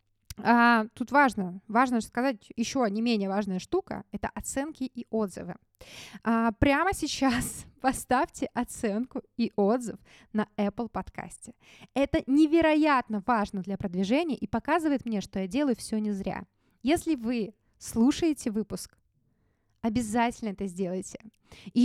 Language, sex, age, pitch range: Russian, female, 20-39, 195-255 Hz